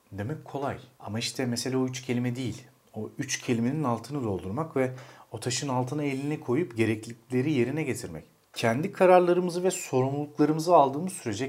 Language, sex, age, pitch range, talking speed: Turkish, male, 40-59, 110-135 Hz, 150 wpm